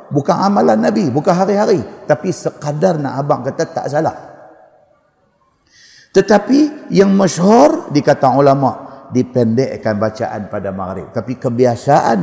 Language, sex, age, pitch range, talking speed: Malay, male, 50-69, 110-140 Hz, 115 wpm